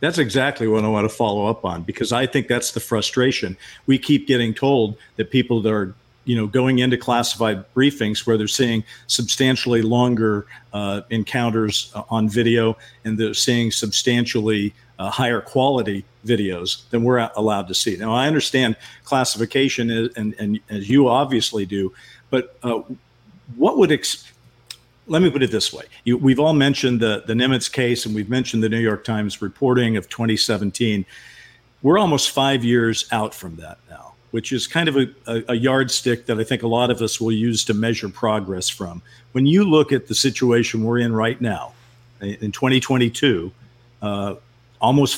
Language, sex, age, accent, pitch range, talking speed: English, male, 50-69, American, 110-130 Hz, 175 wpm